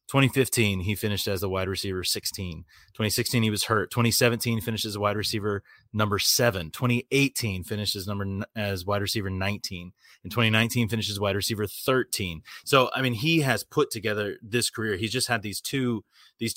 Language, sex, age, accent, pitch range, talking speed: English, male, 30-49, American, 95-115 Hz, 175 wpm